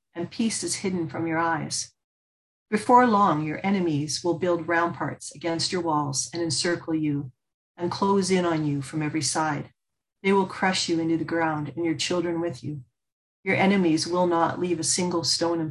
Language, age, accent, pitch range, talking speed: English, 40-59, American, 155-180 Hz, 185 wpm